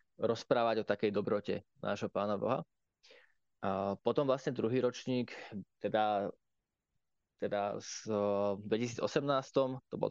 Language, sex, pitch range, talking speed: Slovak, male, 105-115 Hz, 105 wpm